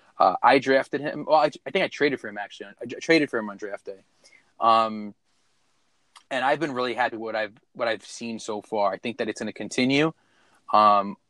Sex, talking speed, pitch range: male, 230 wpm, 115-150 Hz